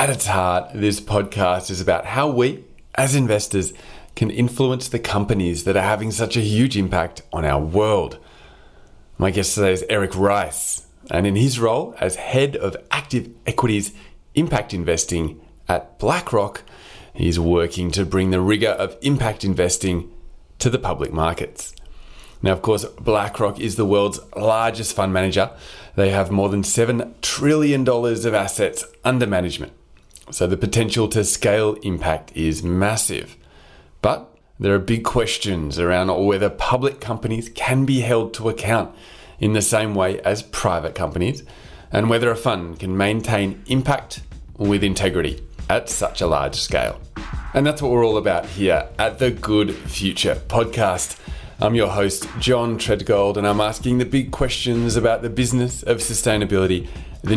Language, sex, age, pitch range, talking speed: English, male, 30-49, 90-115 Hz, 155 wpm